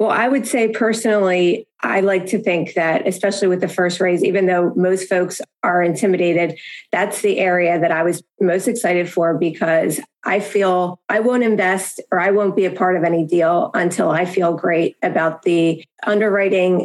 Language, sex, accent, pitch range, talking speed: English, female, American, 180-210 Hz, 185 wpm